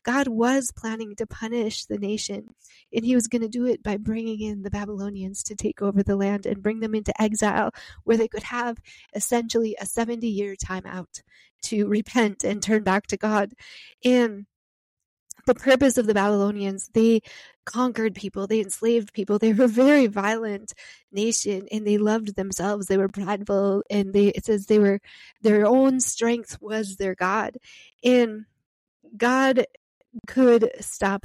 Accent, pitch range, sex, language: American, 195-230 Hz, female, English